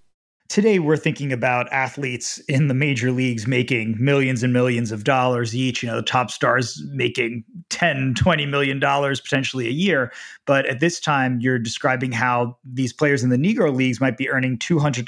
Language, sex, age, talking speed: English, male, 30-49, 185 wpm